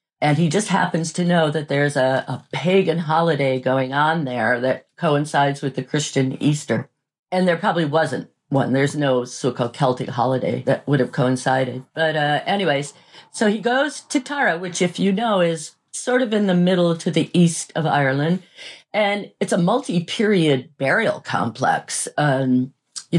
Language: English